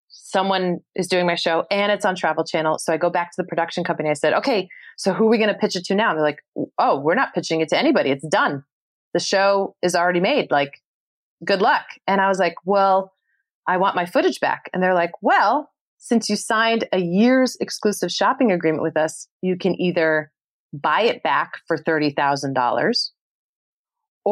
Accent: American